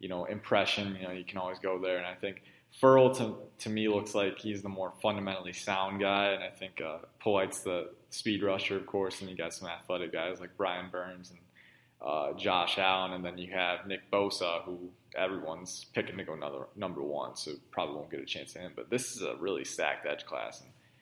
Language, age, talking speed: English, 20-39, 225 wpm